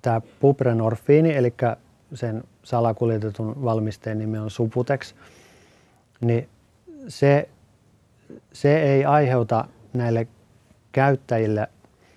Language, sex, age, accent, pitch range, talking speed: Finnish, male, 30-49, native, 110-130 Hz, 80 wpm